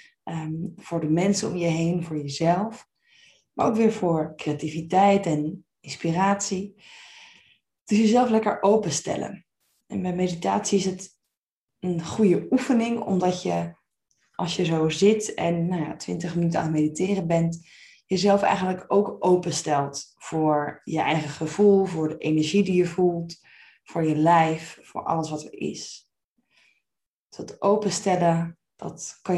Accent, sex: Dutch, female